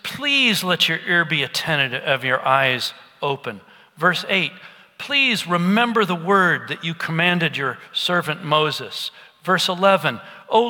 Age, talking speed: 40-59, 140 wpm